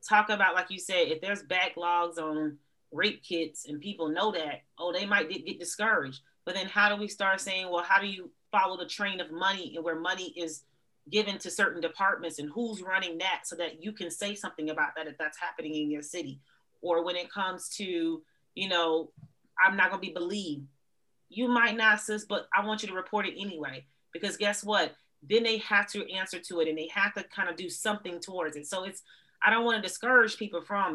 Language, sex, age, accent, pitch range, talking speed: English, female, 30-49, American, 170-215 Hz, 225 wpm